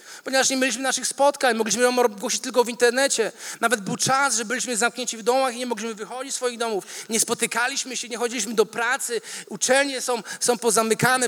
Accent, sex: native, male